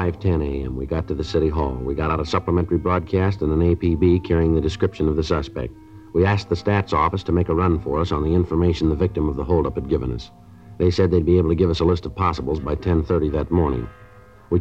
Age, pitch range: 60-79, 80-95 Hz